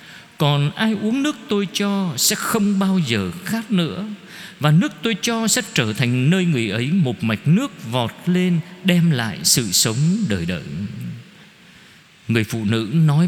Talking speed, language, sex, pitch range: 165 wpm, Vietnamese, male, 140-200 Hz